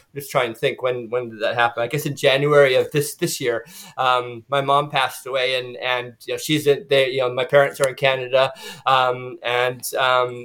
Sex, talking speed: male, 225 wpm